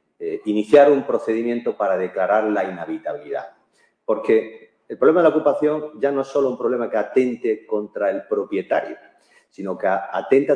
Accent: Spanish